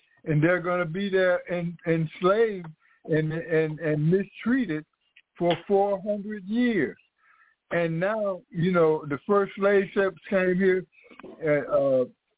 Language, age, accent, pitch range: English, 60-79, American, 145-190 Hz